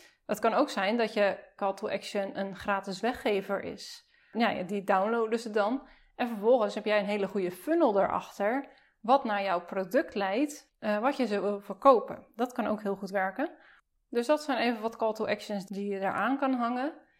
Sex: female